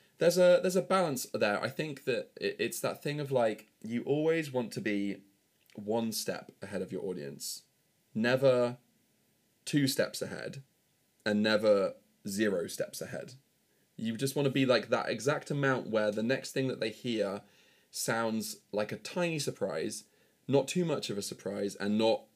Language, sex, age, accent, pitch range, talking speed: English, male, 20-39, British, 100-135 Hz, 170 wpm